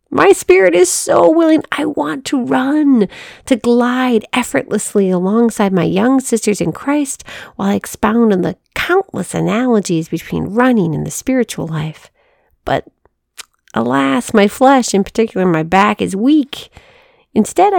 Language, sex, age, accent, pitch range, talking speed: English, female, 40-59, American, 190-260 Hz, 140 wpm